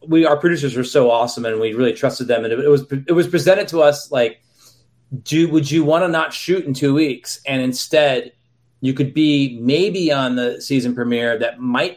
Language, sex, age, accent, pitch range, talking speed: English, male, 30-49, American, 120-150 Hz, 210 wpm